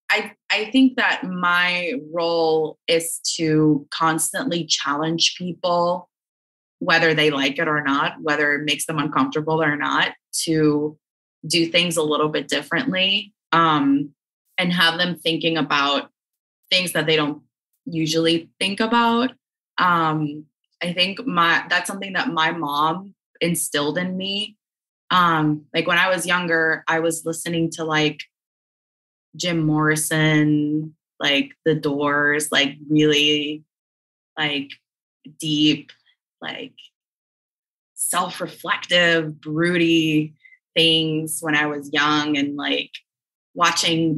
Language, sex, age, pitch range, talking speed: English, female, 20-39, 150-175 Hz, 120 wpm